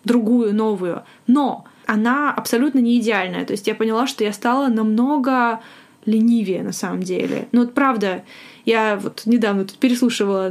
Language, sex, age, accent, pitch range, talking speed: Russian, female, 20-39, native, 215-260 Hz, 155 wpm